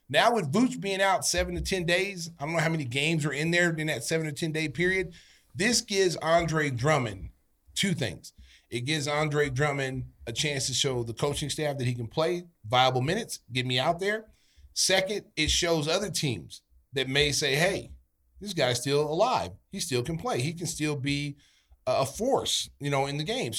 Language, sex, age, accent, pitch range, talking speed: English, male, 30-49, American, 135-175 Hz, 205 wpm